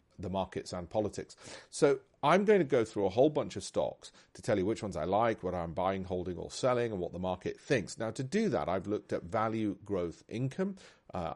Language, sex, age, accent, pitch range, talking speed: English, male, 40-59, British, 95-135 Hz, 230 wpm